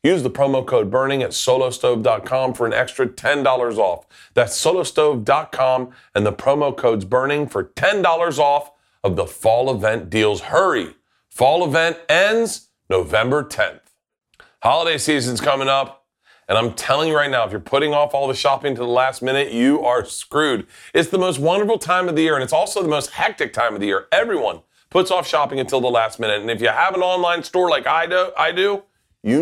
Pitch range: 110-145 Hz